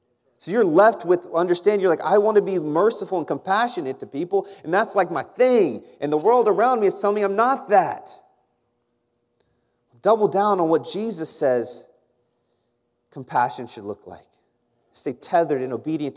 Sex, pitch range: male, 150-185 Hz